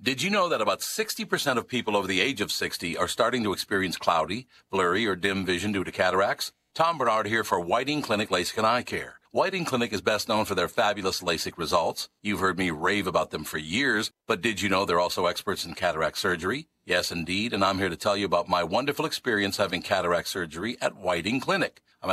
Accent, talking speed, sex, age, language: American, 220 wpm, male, 50-69, English